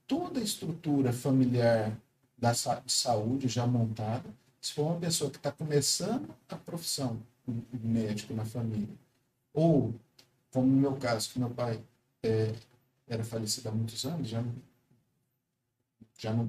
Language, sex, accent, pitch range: Portuguese, male, Brazilian, 115-140 Hz